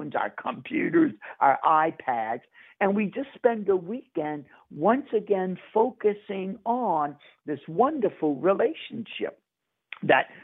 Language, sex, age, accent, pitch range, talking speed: English, male, 60-79, American, 150-205 Hz, 105 wpm